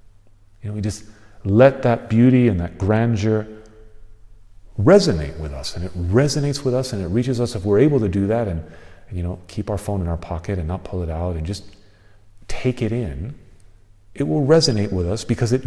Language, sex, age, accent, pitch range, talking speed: English, male, 40-59, American, 95-120 Hz, 205 wpm